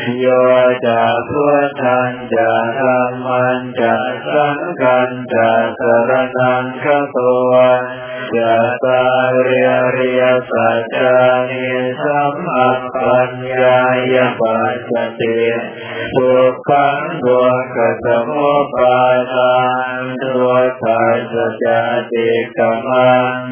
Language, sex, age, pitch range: Thai, male, 20-39, 125-130 Hz